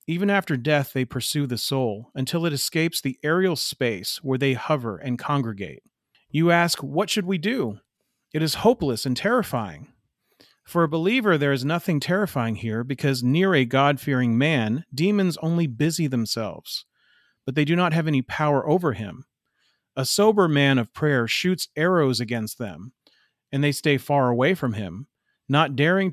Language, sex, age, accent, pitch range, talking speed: English, male, 40-59, American, 125-160 Hz, 170 wpm